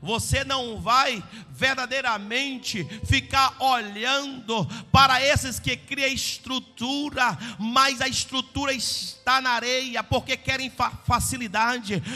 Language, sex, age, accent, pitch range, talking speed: Portuguese, male, 50-69, Brazilian, 255-370 Hz, 100 wpm